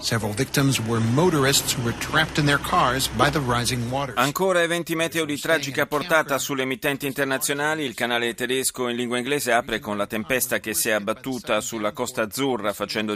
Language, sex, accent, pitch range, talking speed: Italian, male, native, 110-140 Hz, 125 wpm